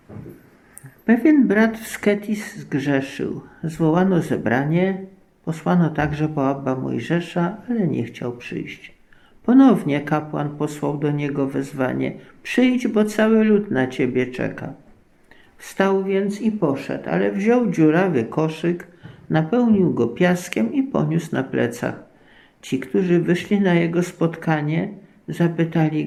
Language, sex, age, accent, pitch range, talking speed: Polish, male, 50-69, native, 155-205 Hz, 115 wpm